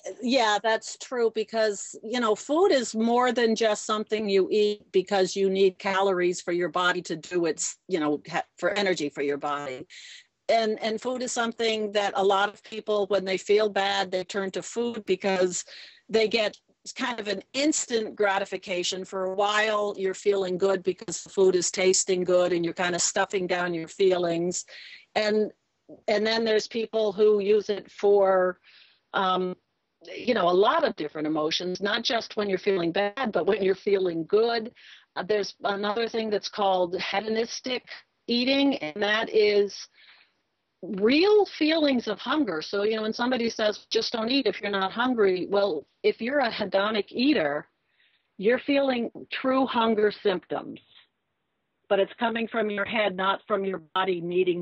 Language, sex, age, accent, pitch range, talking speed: English, female, 50-69, American, 185-225 Hz, 170 wpm